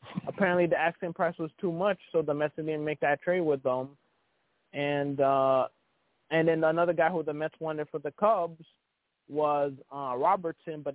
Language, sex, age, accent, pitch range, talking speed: English, male, 20-39, American, 145-165 Hz, 180 wpm